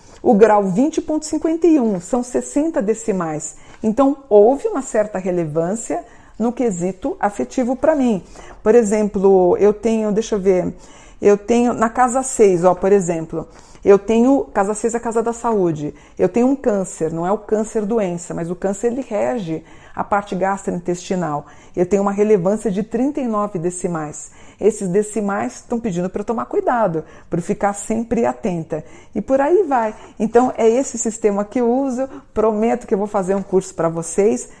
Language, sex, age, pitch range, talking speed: Portuguese, female, 50-69, 185-235 Hz, 170 wpm